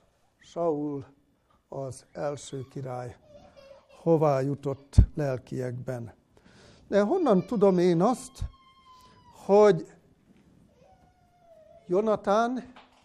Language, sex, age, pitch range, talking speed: Hungarian, male, 60-79, 150-205 Hz, 65 wpm